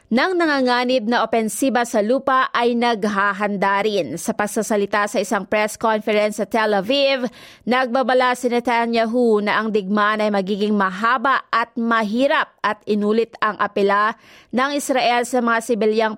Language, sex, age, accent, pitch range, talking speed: Filipino, female, 30-49, native, 140-230 Hz, 135 wpm